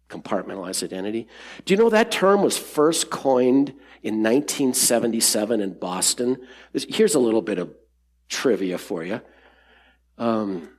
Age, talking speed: 50-69, 130 wpm